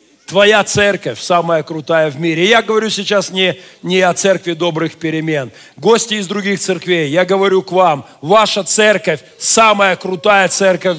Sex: male